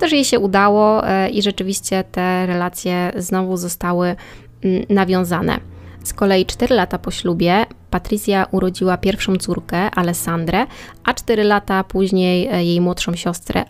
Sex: female